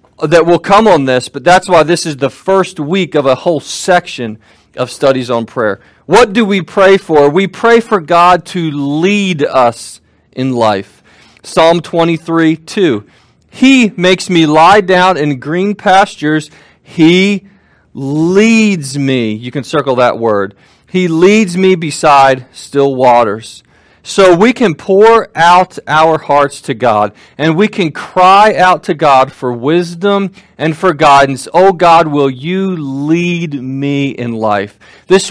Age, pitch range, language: 40-59, 140-185 Hz, English